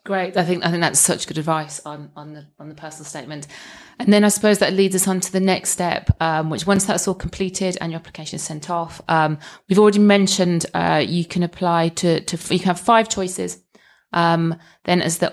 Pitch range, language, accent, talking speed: 150-180 Hz, English, British, 230 wpm